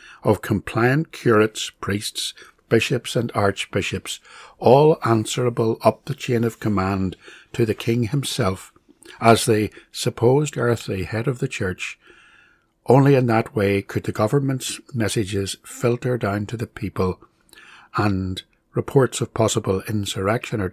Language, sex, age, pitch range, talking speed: English, male, 60-79, 100-115 Hz, 130 wpm